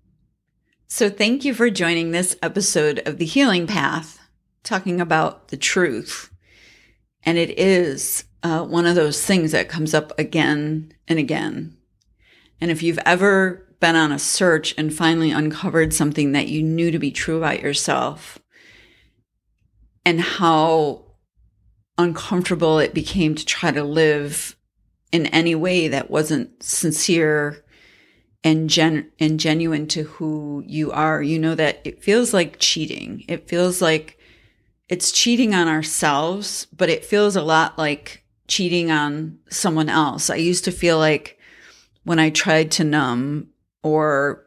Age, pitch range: 40-59, 150-170 Hz